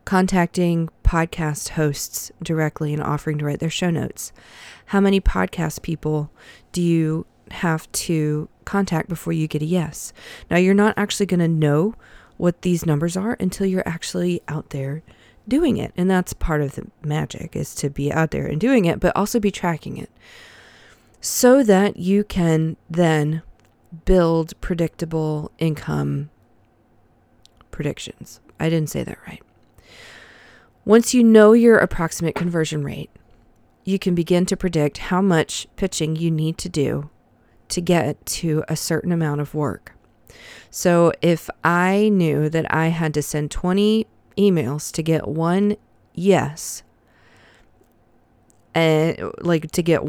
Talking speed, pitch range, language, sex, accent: 145 wpm, 150-185 Hz, English, female, American